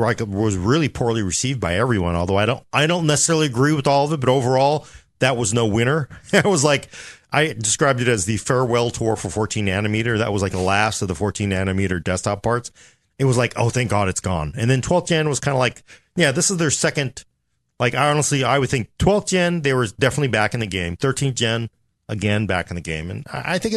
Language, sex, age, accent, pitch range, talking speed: English, male, 40-59, American, 105-145 Hz, 235 wpm